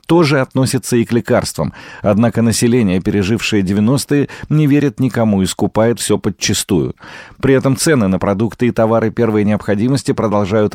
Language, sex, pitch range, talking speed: Russian, male, 100-130 Hz, 145 wpm